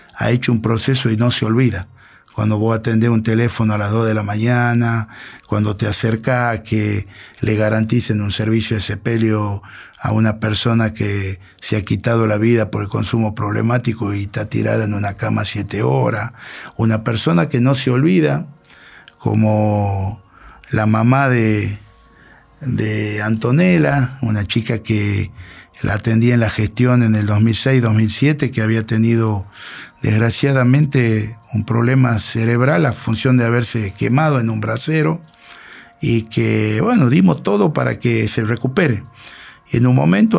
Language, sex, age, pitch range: Spanish, male, 50-69, 110-125 Hz